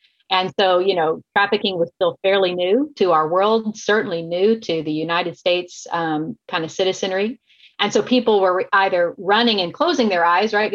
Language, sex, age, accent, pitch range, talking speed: English, female, 40-59, American, 170-200 Hz, 185 wpm